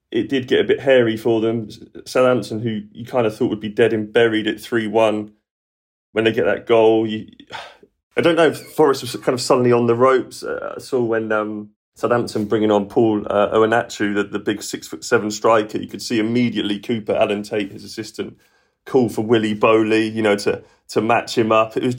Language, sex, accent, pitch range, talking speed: English, male, British, 105-120 Hz, 210 wpm